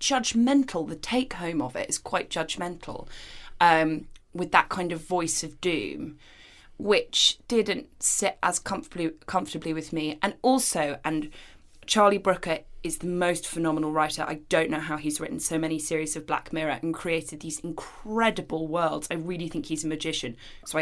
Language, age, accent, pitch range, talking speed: English, 20-39, British, 155-185 Hz, 170 wpm